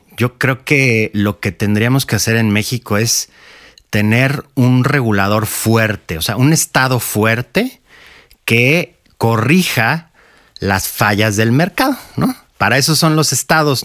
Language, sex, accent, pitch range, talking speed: Spanish, male, Mexican, 100-125 Hz, 140 wpm